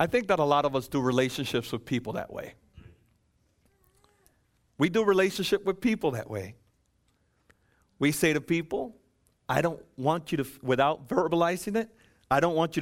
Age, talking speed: 40-59, 170 wpm